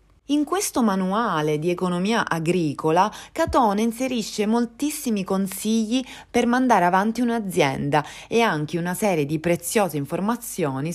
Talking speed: 115 wpm